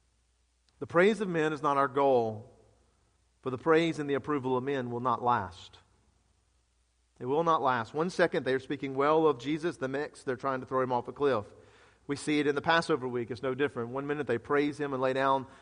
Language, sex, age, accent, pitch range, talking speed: English, male, 40-59, American, 120-145 Hz, 225 wpm